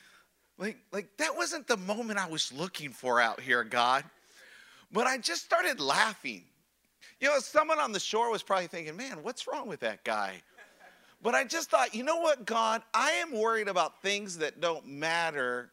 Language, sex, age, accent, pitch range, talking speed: English, male, 50-69, American, 160-225 Hz, 185 wpm